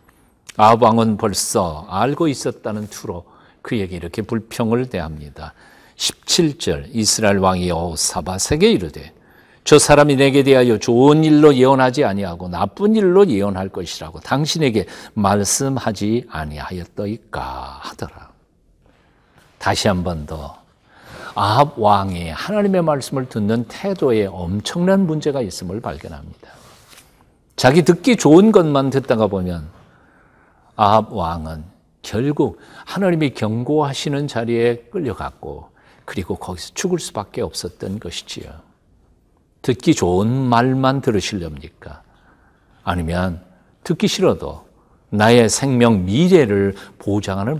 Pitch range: 90-140 Hz